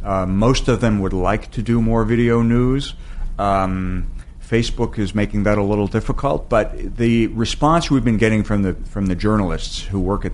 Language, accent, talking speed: English, American, 190 wpm